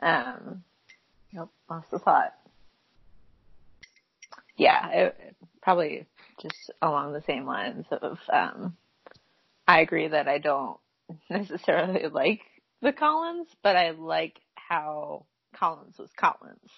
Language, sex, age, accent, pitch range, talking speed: English, female, 30-49, American, 160-215 Hz, 110 wpm